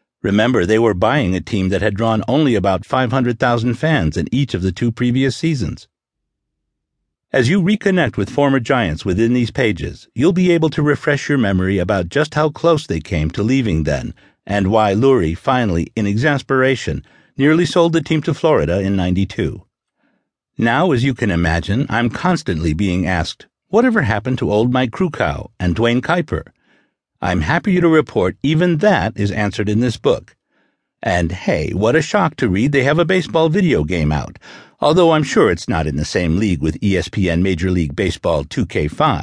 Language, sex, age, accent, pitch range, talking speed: English, male, 50-69, American, 95-150 Hz, 180 wpm